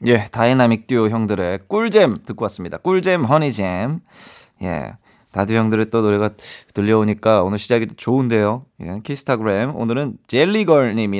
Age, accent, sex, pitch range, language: 20-39, native, male, 110-160 Hz, Korean